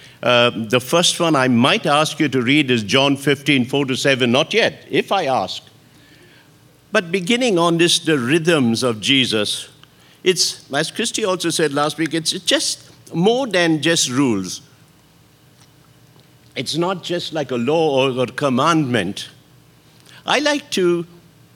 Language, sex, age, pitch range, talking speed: English, male, 60-79, 140-180 Hz, 150 wpm